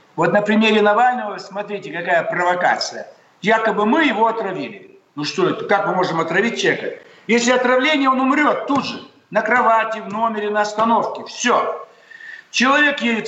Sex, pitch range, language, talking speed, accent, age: male, 200-250 Hz, Russian, 150 wpm, native, 60-79